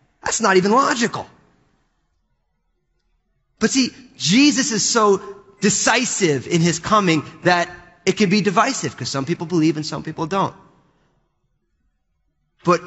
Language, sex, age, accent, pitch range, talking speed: English, male, 30-49, American, 150-190 Hz, 125 wpm